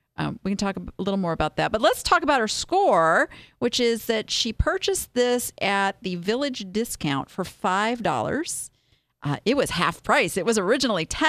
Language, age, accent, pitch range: English, 40-59, American, 195-305 Hz